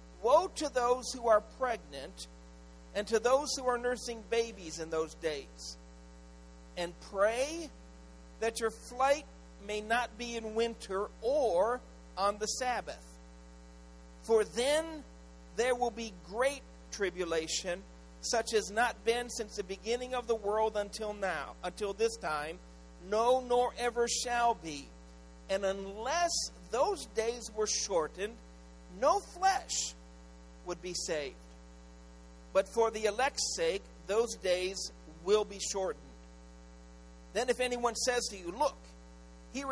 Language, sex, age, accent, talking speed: English, male, 50-69, American, 130 wpm